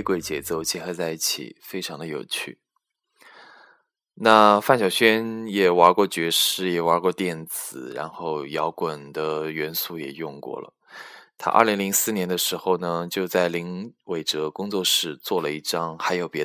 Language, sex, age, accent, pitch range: Chinese, male, 20-39, native, 90-110 Hz